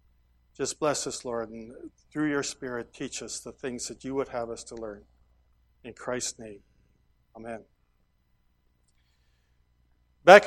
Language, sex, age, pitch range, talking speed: English, male, 60-79, 105-160 Hz, 140 wpm